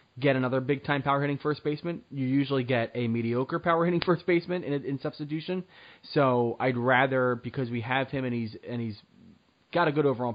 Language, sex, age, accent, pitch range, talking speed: English, male, 20-39, American, 120-145 Hz, 185 wpm